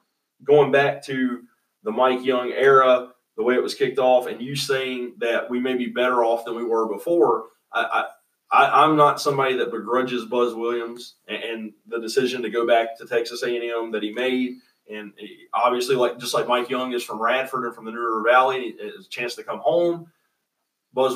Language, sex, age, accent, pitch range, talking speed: English, male, 30-49, American, 120-145 Hz, 210 wpm